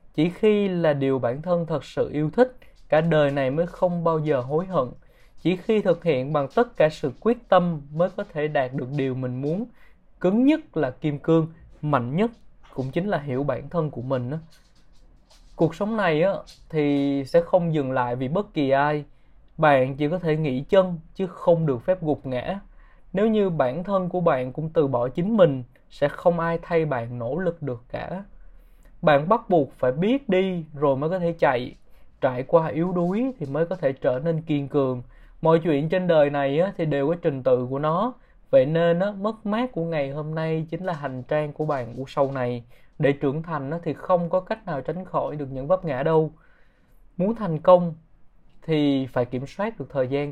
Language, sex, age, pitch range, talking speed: Vietnamese, male, 20-39, 140-180 Hz, 205 wpm